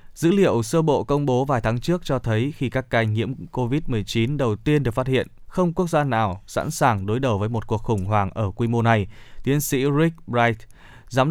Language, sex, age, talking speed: Vietnamese, male, 20-39, 230 wpm